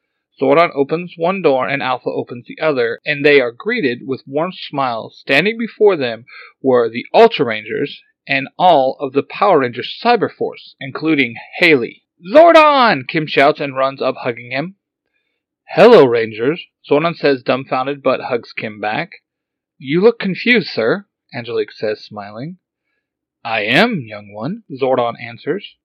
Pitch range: 140-230 Hz